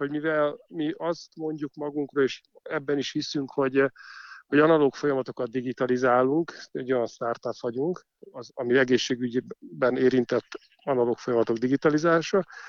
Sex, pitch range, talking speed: male, 125-155 Hz, 125 wpm